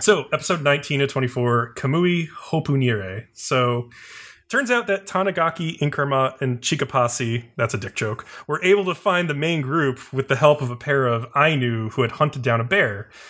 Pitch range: 115-140 Hz